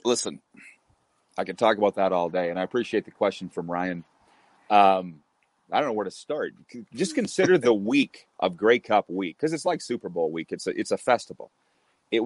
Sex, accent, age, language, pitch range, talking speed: male, American, 30-49, English, 95-120 Hz, 205 wpm